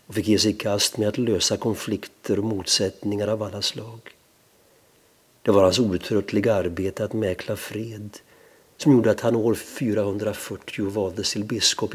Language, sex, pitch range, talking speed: Swedish, male, 100-110 Hz, 160 wpm